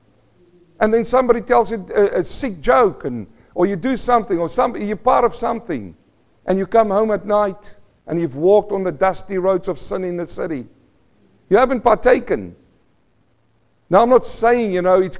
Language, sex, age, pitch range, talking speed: English, male, 50-69, 120-180 Hz, 190 wpm